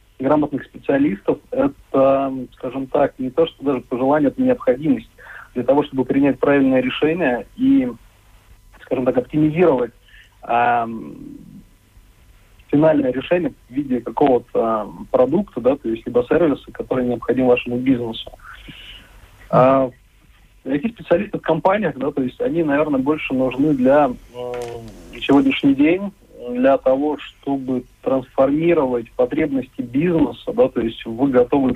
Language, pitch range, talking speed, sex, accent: Russian, 120-150 Hz, 120 wpm, male, native